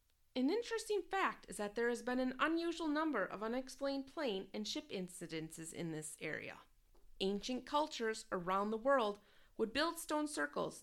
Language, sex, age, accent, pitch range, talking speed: English, female, 30-49, American, 185-275 Hz, 160 wpm